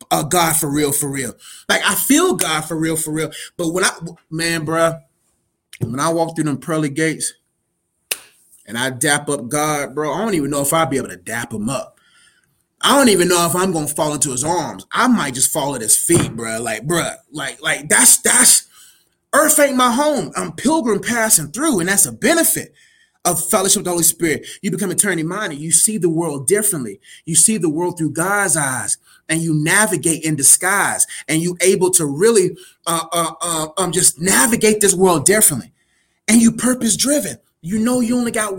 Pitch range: 160-240 Hz